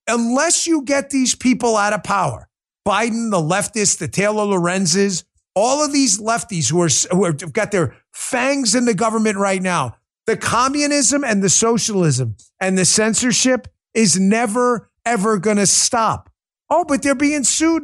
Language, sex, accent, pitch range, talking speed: English, male, American, 175-240 Hz, 165 wpm